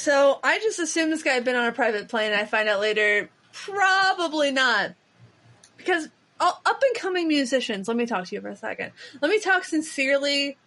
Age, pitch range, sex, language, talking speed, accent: 30-49, 240-330 Hz, female, English, 195 wpm, American